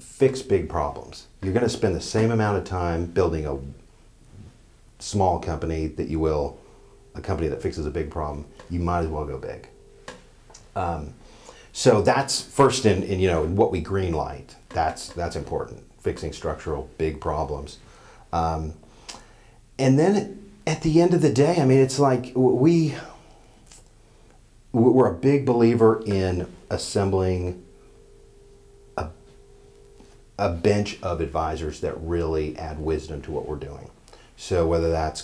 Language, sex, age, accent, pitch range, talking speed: English, male, 40-59, American, 80-120 Hz, 145 wpm